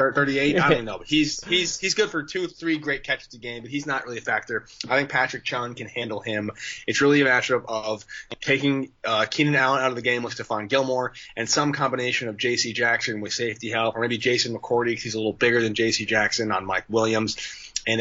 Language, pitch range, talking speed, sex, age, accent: English, 110-130 Hz, 235 wpm, male, 20-39, American